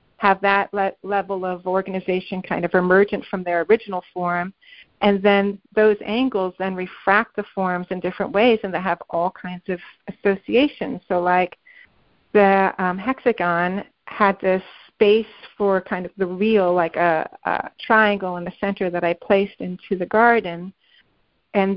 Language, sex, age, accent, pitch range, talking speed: English, female, 40-59, American, 185-220 Hz, 155 wpm